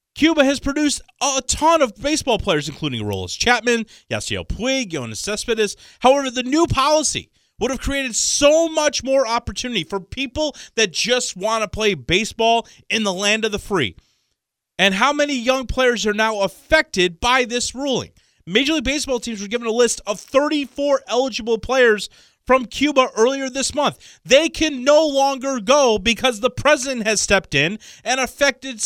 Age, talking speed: 30-49, 170 wpm